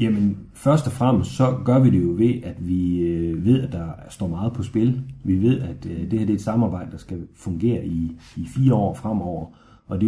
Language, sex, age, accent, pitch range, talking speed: Danish, male, 30-49, native, 90-120 Hz, 240 wpm